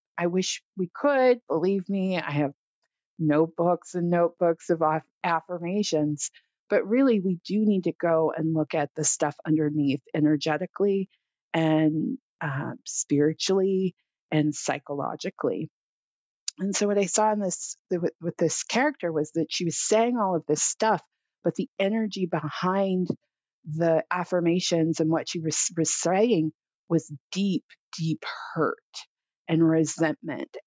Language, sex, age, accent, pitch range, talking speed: English, female, 40-59, American, 155-195 Hz, 135 wpm